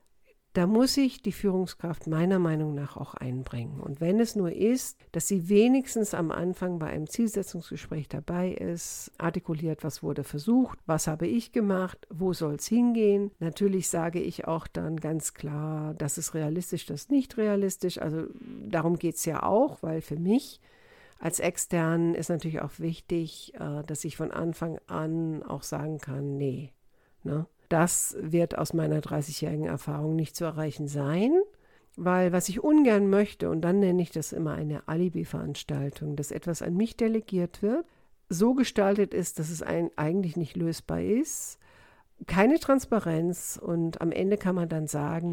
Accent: German